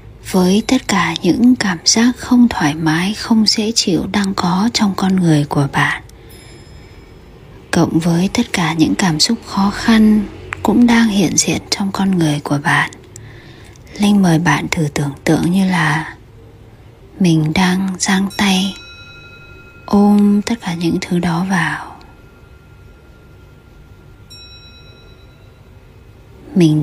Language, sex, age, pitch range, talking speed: Vietnamese, female, 20-39, 125-195 Hz, 125 wpm